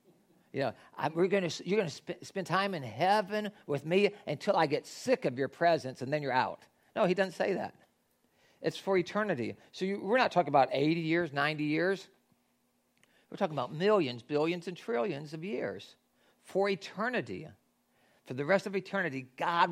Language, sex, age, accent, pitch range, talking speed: English, male, 50-69, American, 150-200 Hz, 170 wpm